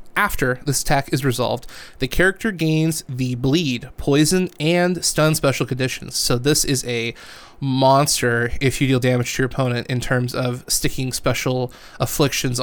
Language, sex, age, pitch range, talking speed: English, male, 20-39, 130-165 Hz, 155 wpm